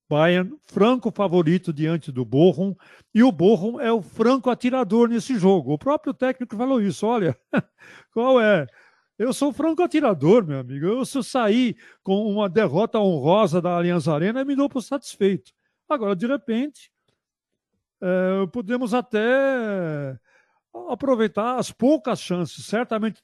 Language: Portuguese